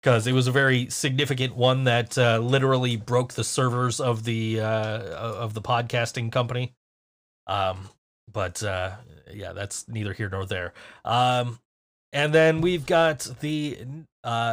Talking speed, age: 150 wpm, 30-49